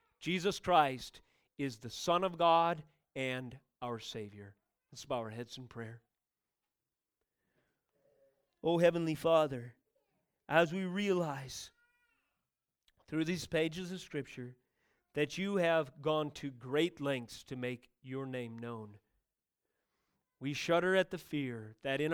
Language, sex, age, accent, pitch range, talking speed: English, male, 40-59, American, 125-175 Hz, 125 wpm